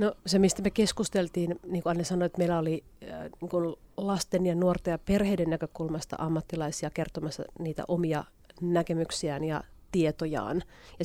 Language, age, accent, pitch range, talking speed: Finnish, 30-49, native, 160-180 Hz, 140 wpm